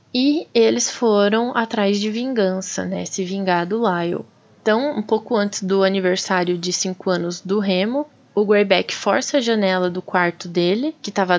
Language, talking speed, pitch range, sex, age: Portuguese, 170 wpm, 185-225 Hz, female, 20-39